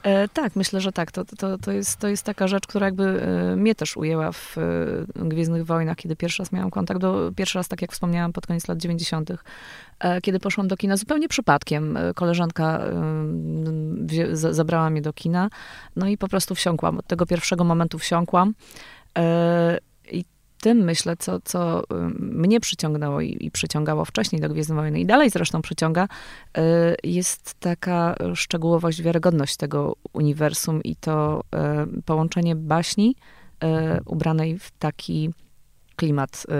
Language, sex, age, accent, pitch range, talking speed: Polish, female, 20-39, native, 150-180 Hz, 155 wpm